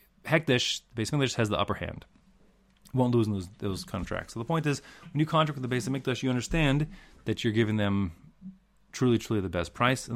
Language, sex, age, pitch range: English, male, 30-49, 105-145 Hz